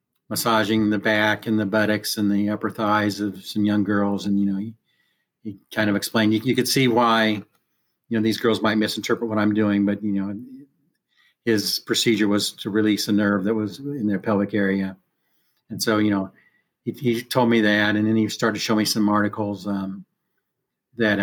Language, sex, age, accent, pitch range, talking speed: English, male, 50-69, American, 100-115 Hz, 205 wpm